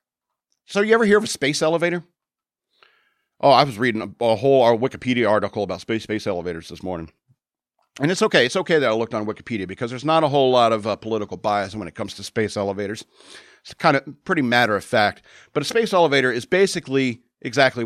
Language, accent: English, American